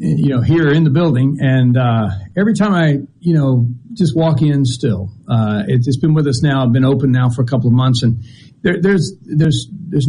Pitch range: 125-160 Hz